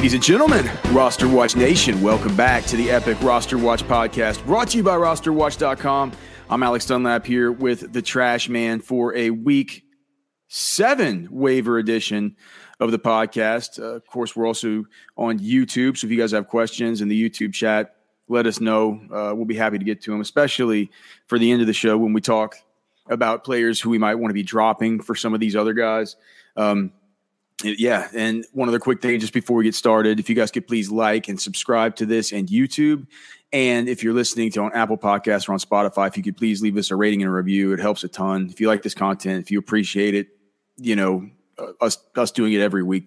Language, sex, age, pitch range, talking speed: English, male, 30-49, 100-120 Hz, 215 wpm